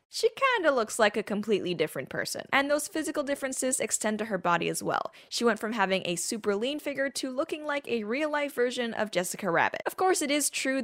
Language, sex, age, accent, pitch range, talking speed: English, female, 10-29, American, 190-270 Hz, 225 wpm